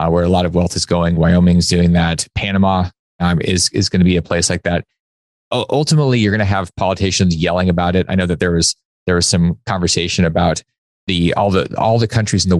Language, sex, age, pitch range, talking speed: English, male, 30-49, 85-100 Hz, 240 wpm